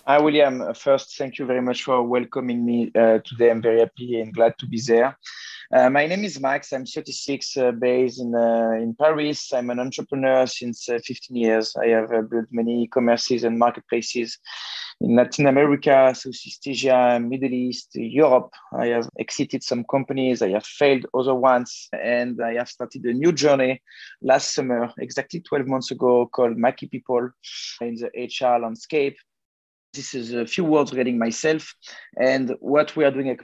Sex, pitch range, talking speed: male, 120-135 Hz, 180 wpm